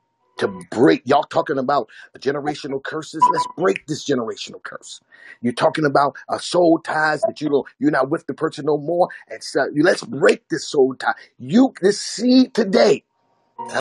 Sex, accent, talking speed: male, American, 175 wpm